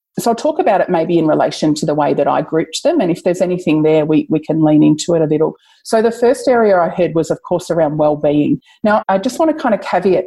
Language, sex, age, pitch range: English, female, 30-49, 160-205 Hz